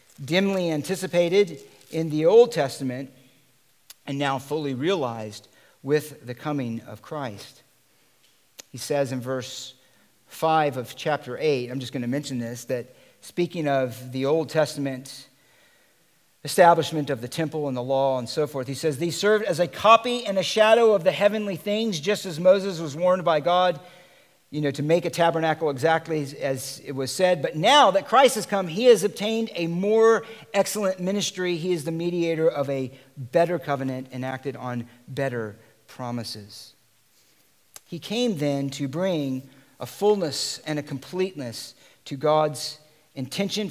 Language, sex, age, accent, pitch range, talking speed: English, male, 50-69, American, 130-180 Hz, 160 wpm